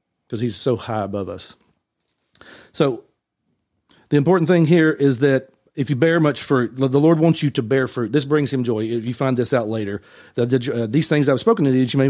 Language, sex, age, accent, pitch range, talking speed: English, male, 40-59, American, 120-150 Hz, 220 wpm